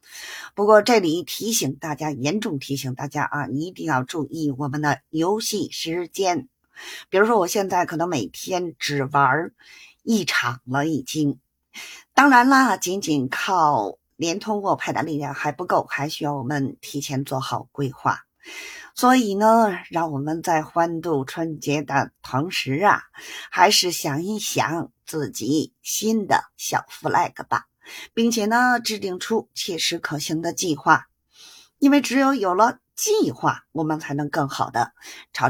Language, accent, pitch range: Chinese, native, 145-210 Hz